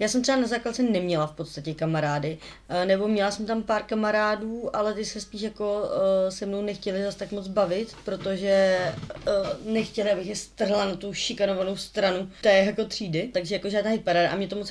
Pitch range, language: 170-205 Hz, Czech